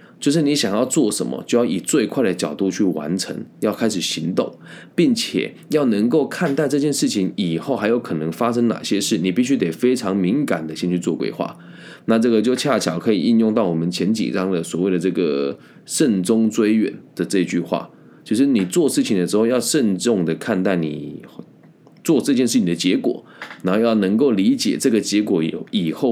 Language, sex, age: Chinese, male, 20-39